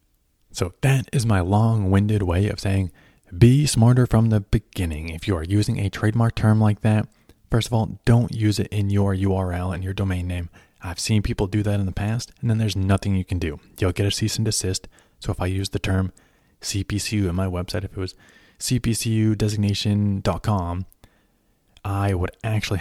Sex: male